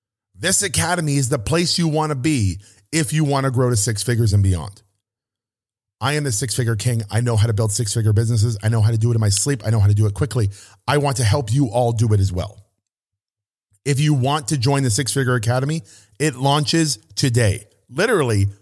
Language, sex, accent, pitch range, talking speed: English, male, American, 110-155 Hz, 220 wpm